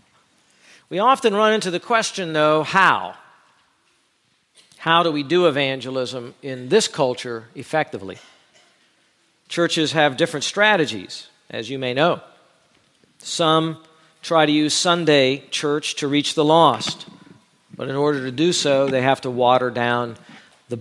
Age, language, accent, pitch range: 50-69, English, American, 130-160 Hz